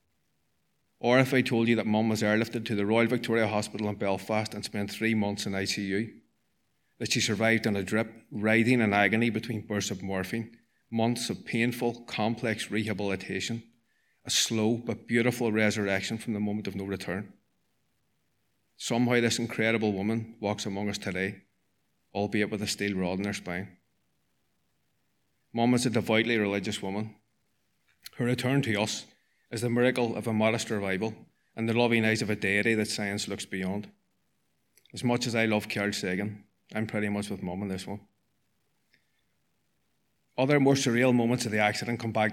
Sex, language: male, English